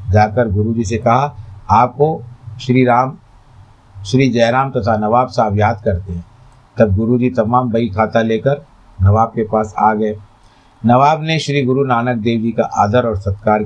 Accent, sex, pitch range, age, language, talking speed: native, male, 100-125 Hz, 50-69, Hindi, 165 wpm